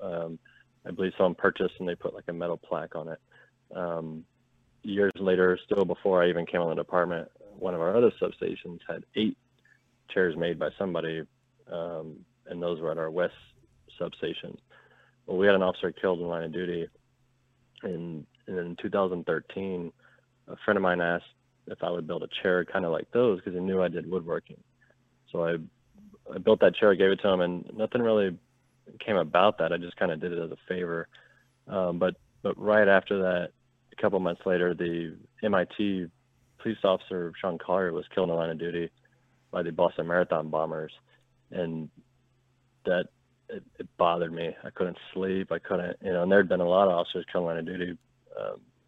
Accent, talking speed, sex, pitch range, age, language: American, 190 wpm, male, 85-125 Hz, 30-49, English